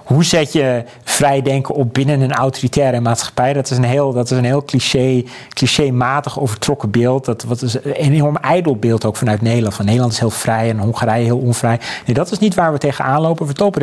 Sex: male